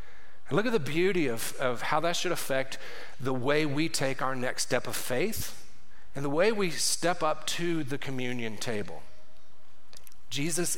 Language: English